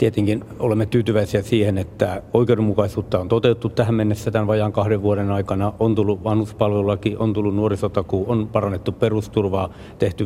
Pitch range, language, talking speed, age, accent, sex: 105-120 Hz, Finnish, 145 wpm, 60-79, native, male